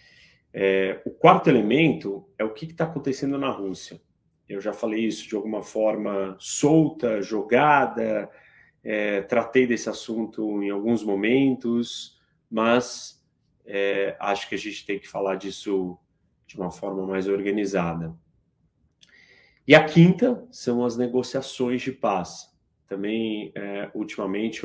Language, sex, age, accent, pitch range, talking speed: Portuguese, male, 30-49, Brazilian, 100-125 Hz, 130 wpm